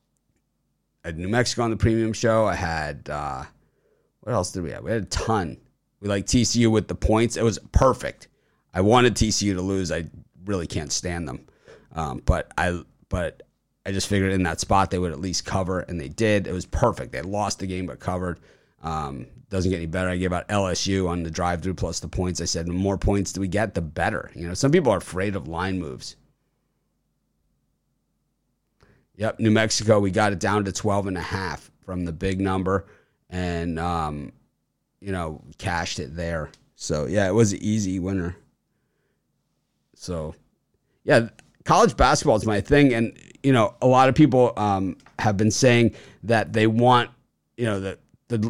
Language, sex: English, male